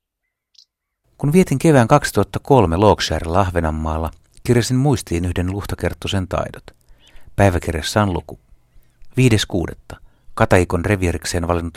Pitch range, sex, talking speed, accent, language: 85-110 Hz, male, 90 wpm, native, Finnish